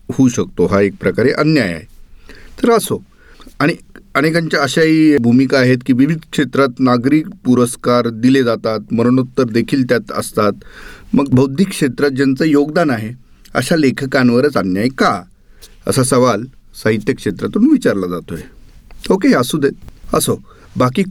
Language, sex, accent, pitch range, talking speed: Marathi, male, native, 115-150 Hz, 105 wpm